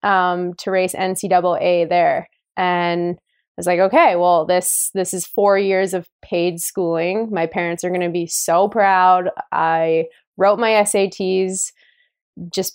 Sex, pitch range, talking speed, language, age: female, 175-210 Hz, 145 wpm, English, 20-39